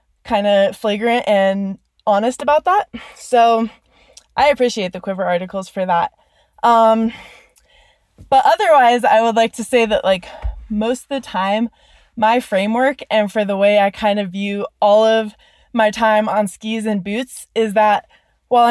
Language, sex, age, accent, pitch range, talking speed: English, female, 20-39, American, 200-235 Hz, 160 wpm